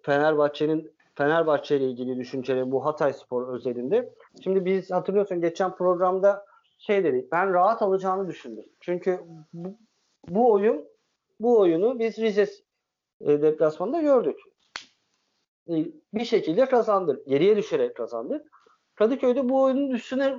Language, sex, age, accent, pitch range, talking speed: Turkish, male, 50-69, native, 160-220 Hz, 120 wpm